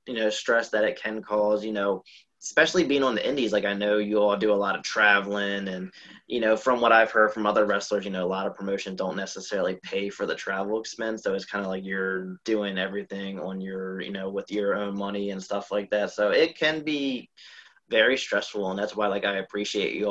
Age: 20-39